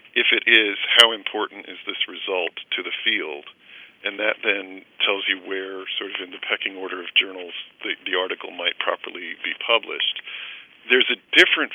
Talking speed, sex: 180 wpm, male